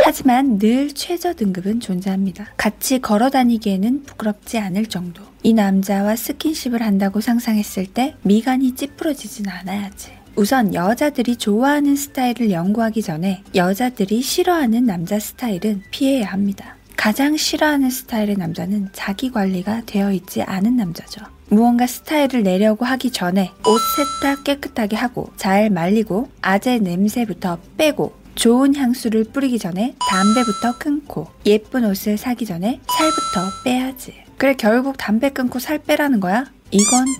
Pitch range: 200-260 Hz